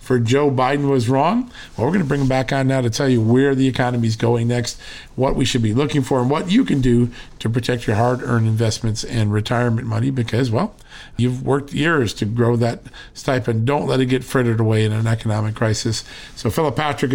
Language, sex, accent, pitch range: English, male, American, 120-145 Hz